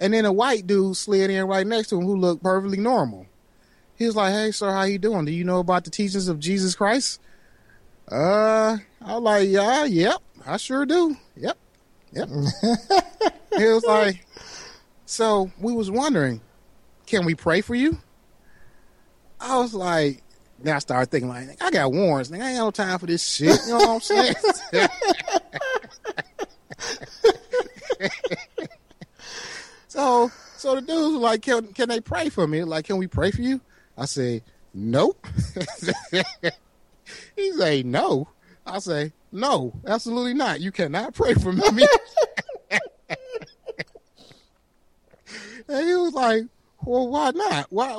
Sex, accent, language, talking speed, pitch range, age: male, American, English, 155 wpm, 175-250 Hz, 30-49